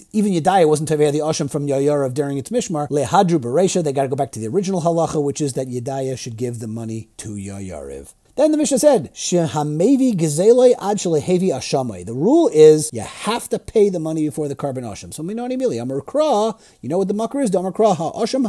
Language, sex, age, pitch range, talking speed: English, male, 30-49, 145-200 Hz, 235 wpm